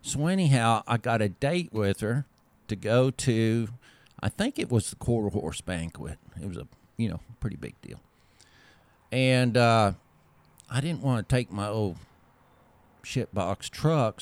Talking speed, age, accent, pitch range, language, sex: 165 wpm, 50-69, American, 105-135 Hz, English, male